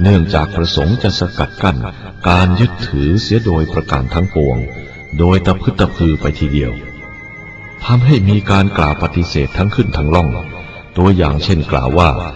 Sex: male